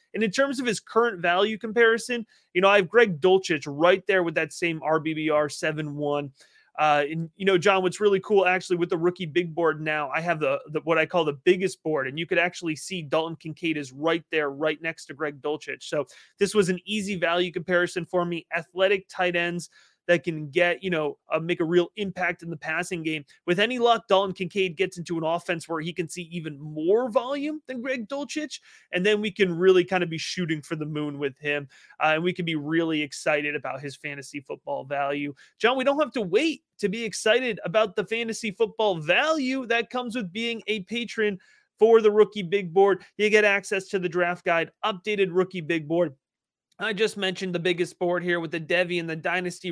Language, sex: English, male